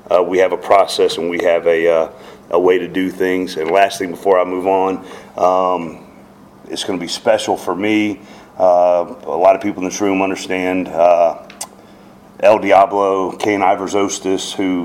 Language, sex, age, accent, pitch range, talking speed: English, male, 40-59, American, 90-100 Hz, 180 wpm